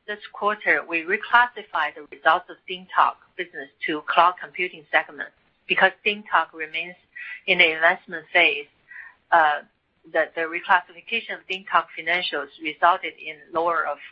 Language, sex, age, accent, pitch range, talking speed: English, female, 50-69, Chinese, 165-205 Hz, 130 wpm